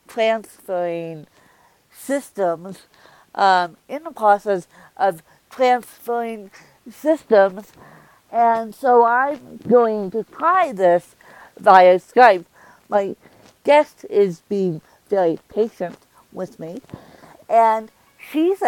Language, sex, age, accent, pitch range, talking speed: English, female, 50-69, American, 180-235 Hz, 90 wpm